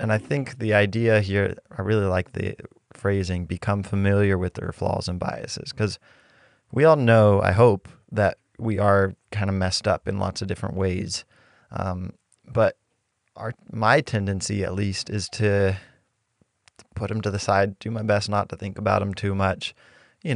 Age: 20-39